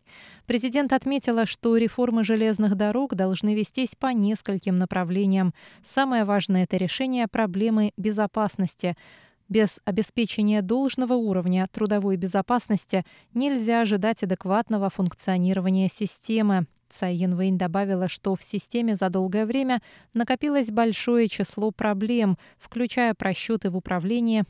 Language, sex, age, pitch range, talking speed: Russian, female, 20-39, 185-225 Hz, 110 wpm